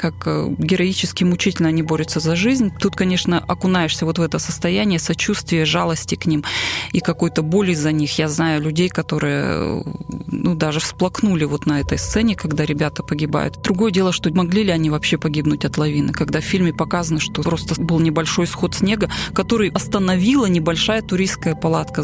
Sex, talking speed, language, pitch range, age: female, 170 wpm, Russian, 155-190 Hz, 20-39